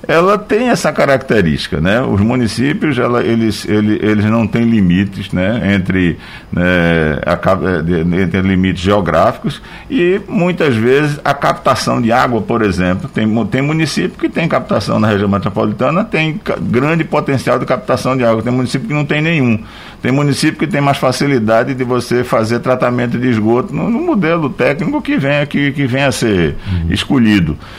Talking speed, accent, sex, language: 165 wpm, Brazilian, male, Portuguese